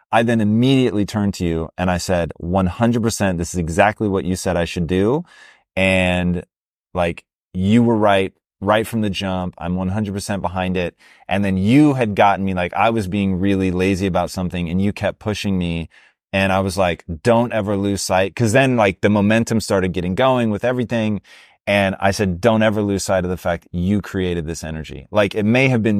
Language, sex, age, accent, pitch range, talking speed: English, male, 30-49, American, 95-110 Hz, 205 wpm